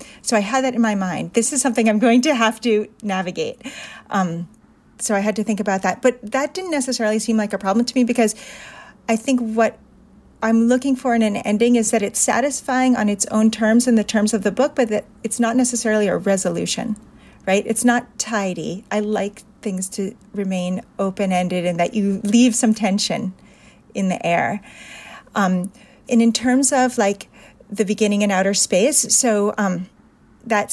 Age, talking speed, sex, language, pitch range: 40-59, 190 wpm, female, English, 195-230 Hz